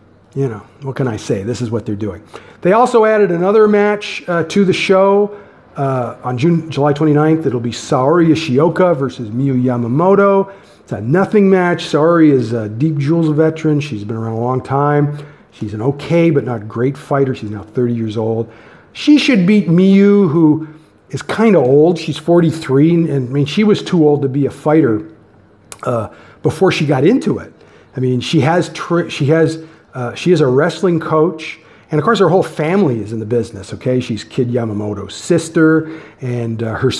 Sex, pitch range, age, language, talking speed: male, 120-175 Hz, 50-69, English, 195 wpm